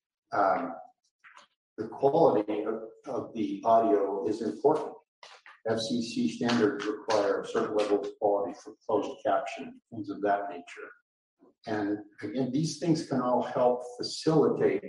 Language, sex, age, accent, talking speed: English, male, 50-69, American, 130 wpm